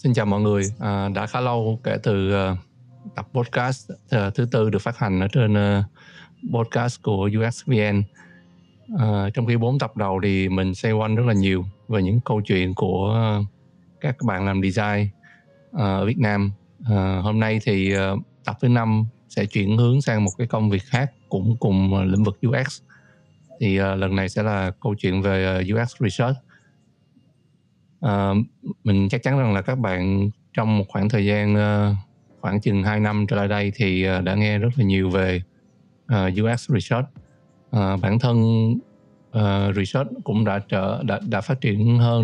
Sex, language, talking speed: male, Vietnamese, 190 wpm